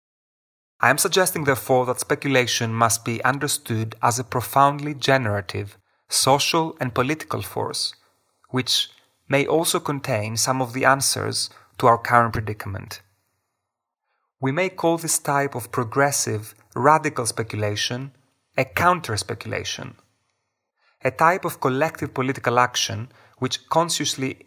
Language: English